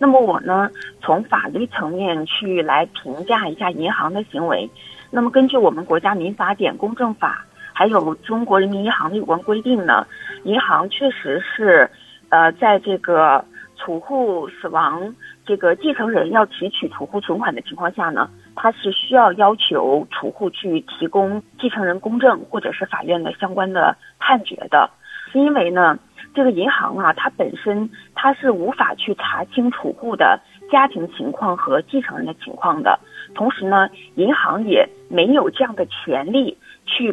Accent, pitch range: native, 185-255 Hz